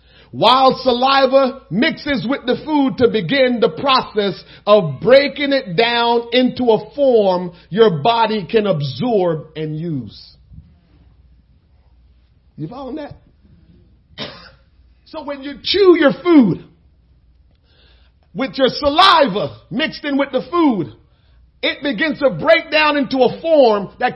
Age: 50-69